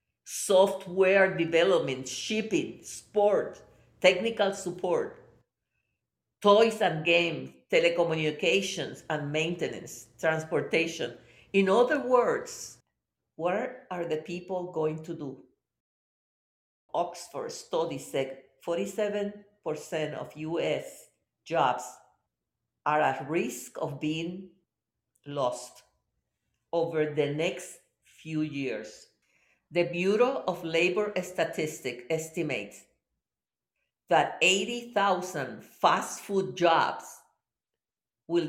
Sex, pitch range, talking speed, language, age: female, 145-185 Hz, 85 wpm, English, 50-69